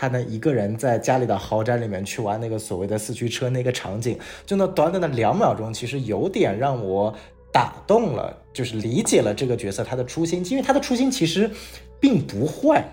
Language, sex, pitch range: Chinese, male, 120-175 Hz